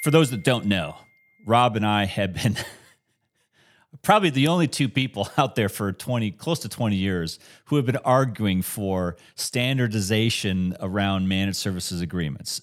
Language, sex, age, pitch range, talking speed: English, male, 30-49, 90-115 Hz, 155 wpm